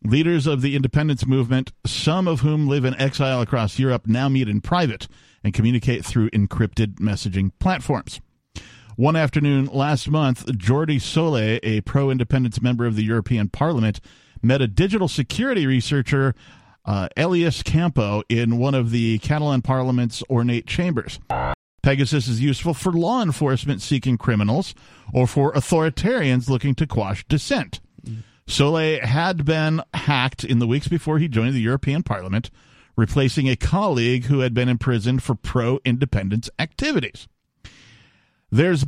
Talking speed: 140 wpm